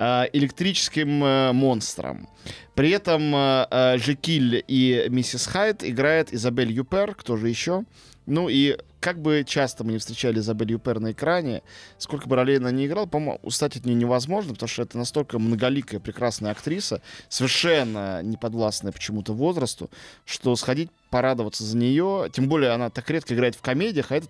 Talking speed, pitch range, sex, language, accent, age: 155 wpm, 120-150 Hz, male, Russian, native, 20-39